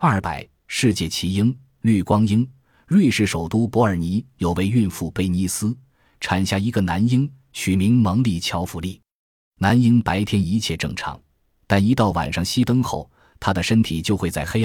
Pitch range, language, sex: 90-115 Hz, Chinese, male